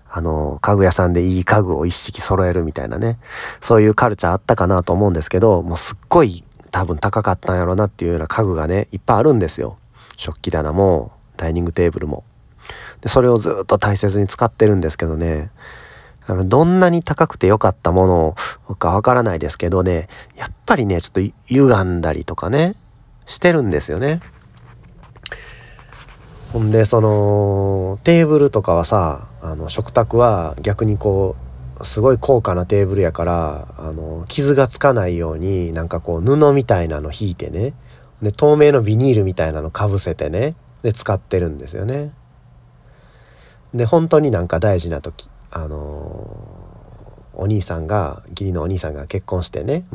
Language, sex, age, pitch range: Japanese, male, 40-59, 85-115 Hz